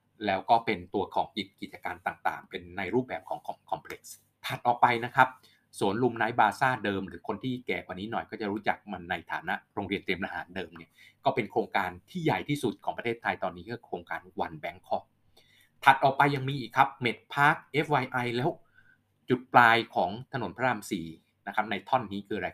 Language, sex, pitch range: Thai, male, 100-130 Hz